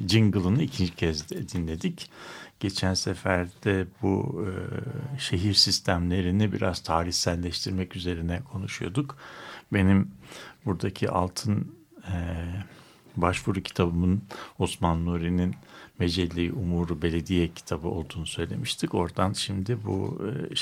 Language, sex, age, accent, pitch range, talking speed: Turkish, male, 60-79, native, 90-115 Hz, 95 wpm